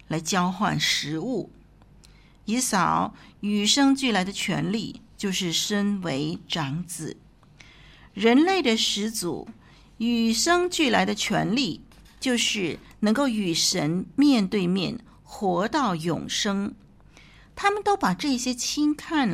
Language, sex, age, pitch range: Chinese, female, 50-69, 185-250 Hz